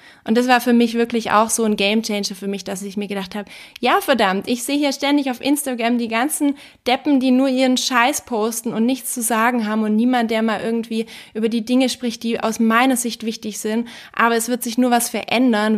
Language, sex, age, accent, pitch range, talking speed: German, female, 20-39, German, 205-240 Hz, 230 wpm